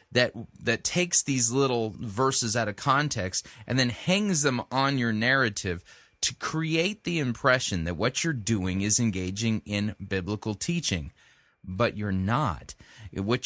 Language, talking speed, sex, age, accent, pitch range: English, 145 wpm, male, 30-49, American, 105-145 Hz